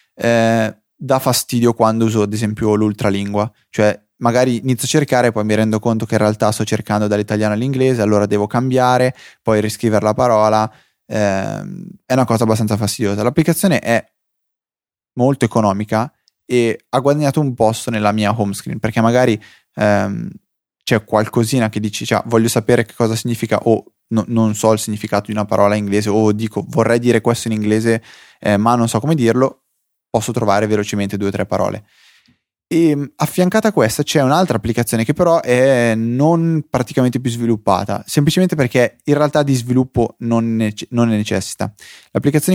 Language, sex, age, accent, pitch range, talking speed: Italian, male, 20-39, native, 105-130 Hz, 175 wpm